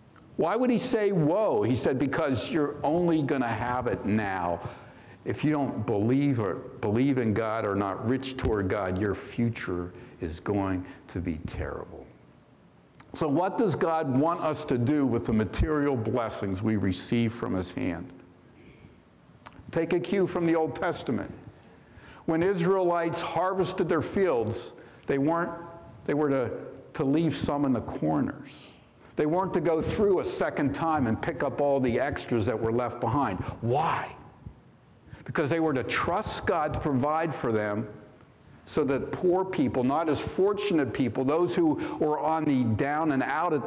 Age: 60-79